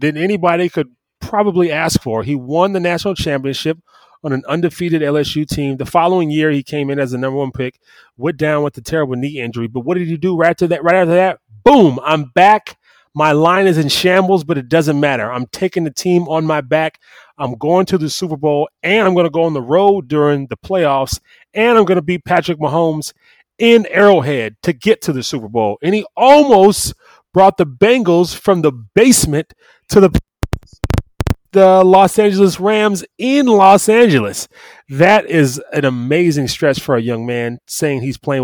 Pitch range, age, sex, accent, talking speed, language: 130-175 Hz, 30-49, male, American, 195 wpm, English